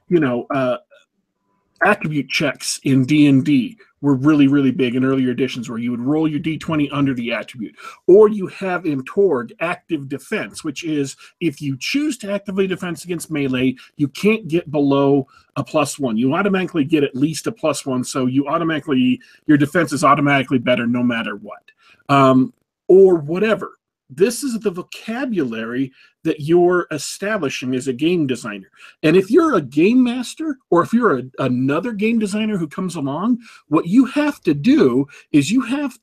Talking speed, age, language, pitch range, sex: 175 wpm, 40-59, English, 140-220 Hz, male